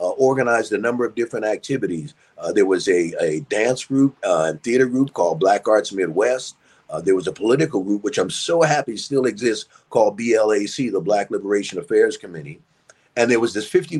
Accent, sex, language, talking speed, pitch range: American, male, English, 195 wpm, 105-155 Hz